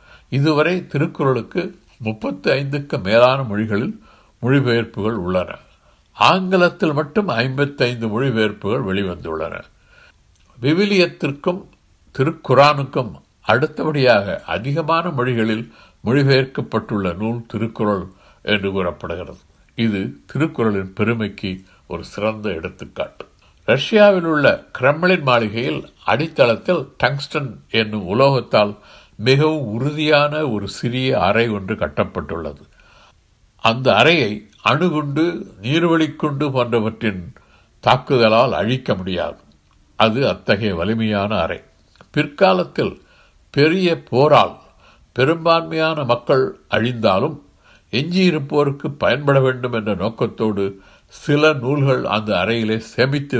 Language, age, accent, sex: Tamil, 60-79, native, male